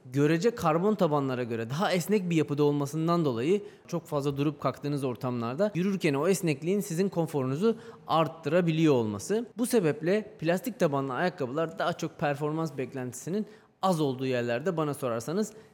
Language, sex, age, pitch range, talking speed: Turkish, male, 30-49, 145-190 Hz, 135 wpm